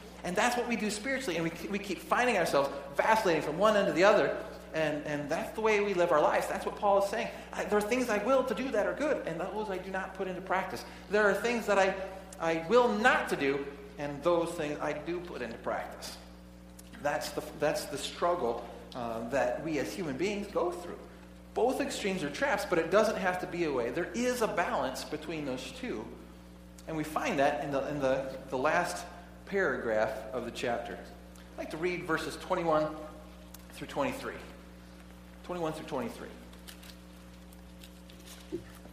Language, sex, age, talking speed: English, male, 40-59, 195 wpm